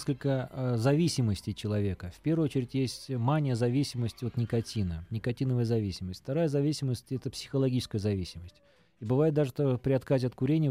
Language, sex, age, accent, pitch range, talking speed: Russian, male, 20-39, native, 115-150 Hz, 145 wpm